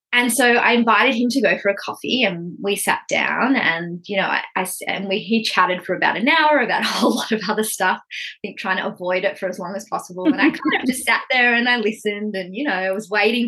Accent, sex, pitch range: Australian, female, 185-225 Hz